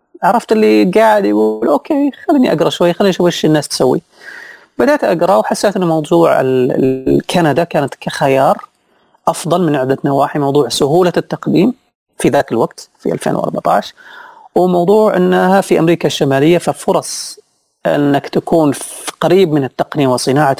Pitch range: 140-180 Hz